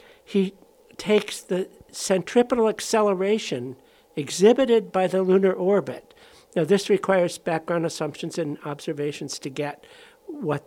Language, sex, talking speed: English, male, 110 wpm